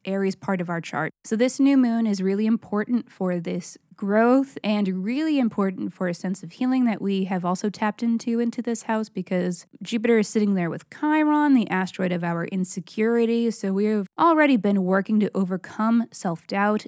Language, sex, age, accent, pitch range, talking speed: English, female, 20-39, American, 185-230 Hz, 190 wpm